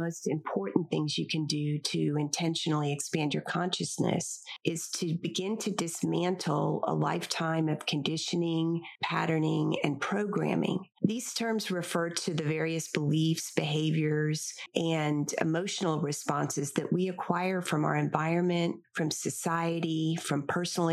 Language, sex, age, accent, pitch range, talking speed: English, female, 40-59, American, 160-185 Hz, 125 wpm